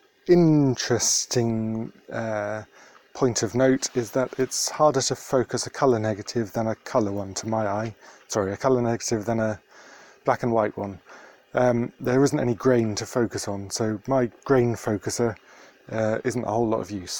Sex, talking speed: male, 175 wpm